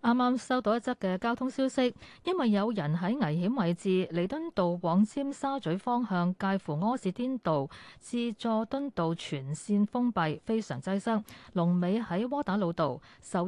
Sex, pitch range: female, 170-240 Hz